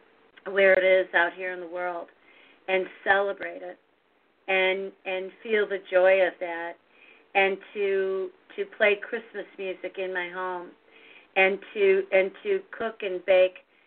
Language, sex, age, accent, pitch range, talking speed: English, female, 40-59, American, 185-210 Hz, 145 wpm